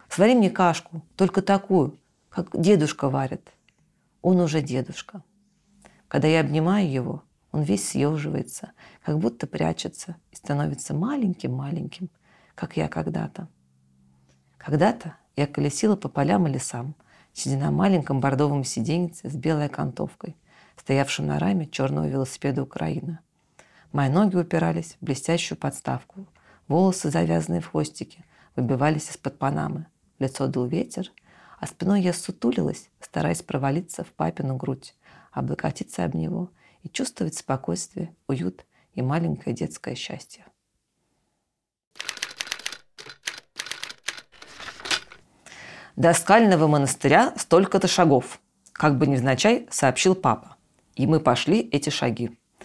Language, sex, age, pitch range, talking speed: Russian, female, 40-59, 135-185 Hz, 115 wpm